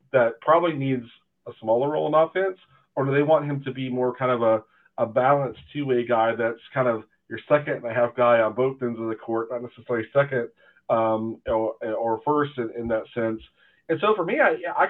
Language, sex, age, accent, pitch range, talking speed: English, male, 40-59, American, 115-150 Hz, 220 wpm